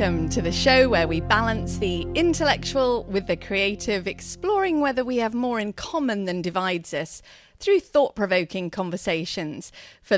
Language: English